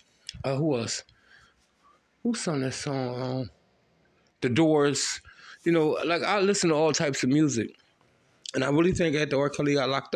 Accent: American